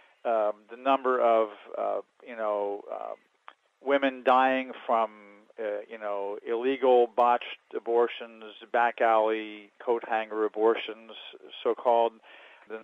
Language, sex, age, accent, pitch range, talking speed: English, male, 40-59, American, 115-140 Hz, 110 wpm